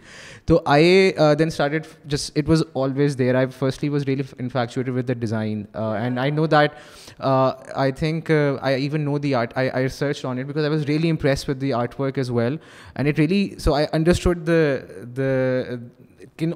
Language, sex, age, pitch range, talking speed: Urdu, male, 20-39, 130-150 Hz, 205 wpm